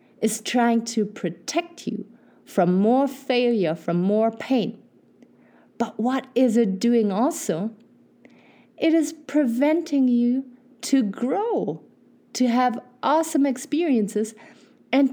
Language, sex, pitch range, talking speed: English, female, 195-250 Hz, 110 wpm